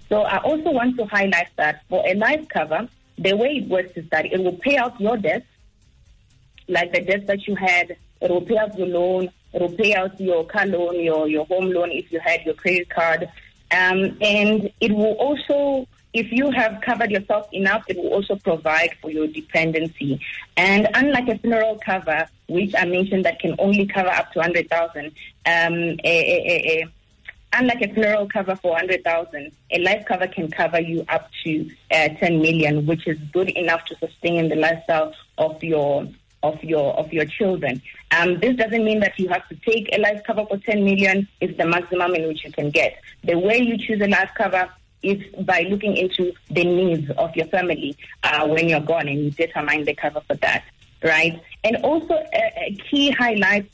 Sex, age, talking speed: female, 30-49, 200 wpm